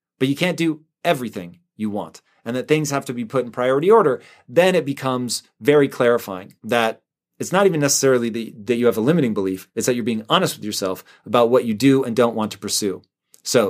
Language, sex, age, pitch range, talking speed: English, male, 30-49, 115-155 Hz, 220 wpm